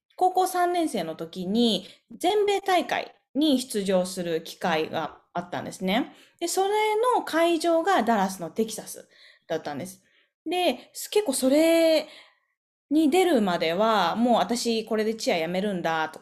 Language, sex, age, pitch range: Japanese, female, 20-39, 175-290 Hz